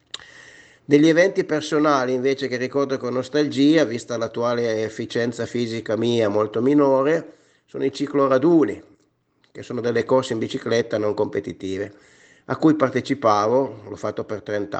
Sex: male